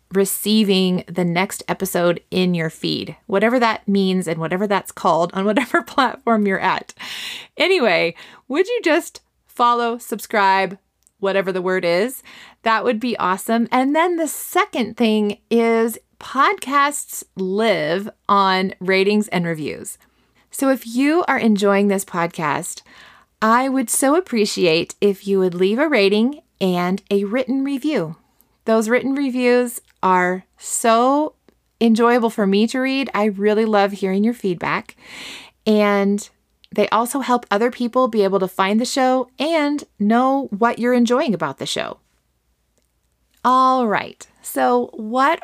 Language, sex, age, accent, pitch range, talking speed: English, female, 30-49, American, 190-245 Hz, 140 wpm